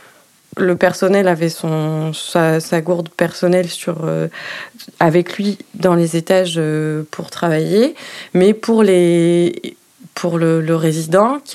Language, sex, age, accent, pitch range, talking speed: French, female, 20-39, French, 160-190 Hz, 135 wpm